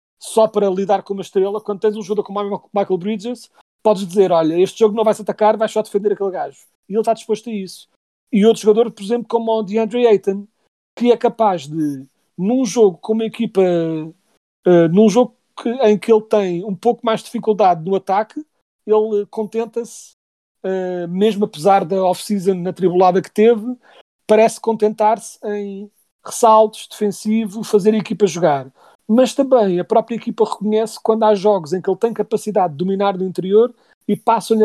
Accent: Portuguese